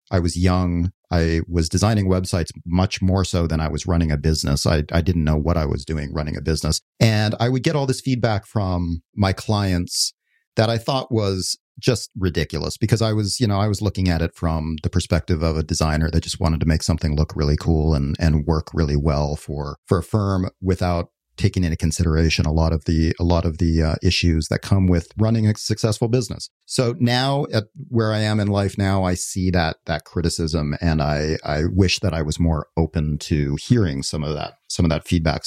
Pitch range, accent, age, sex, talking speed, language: 85-110 Hz, American, 40-59, male, 220 wpm, English